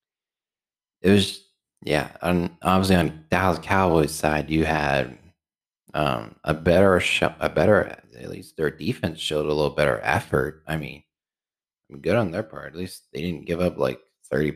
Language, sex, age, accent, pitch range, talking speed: English, male, 30-49, American, 75-95 Hz, 165 wpm